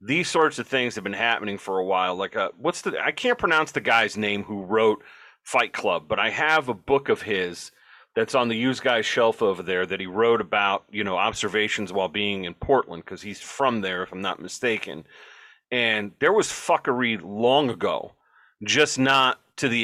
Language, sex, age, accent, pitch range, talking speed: English, male, 40-59, American, 105-125 Hz, 205 wpm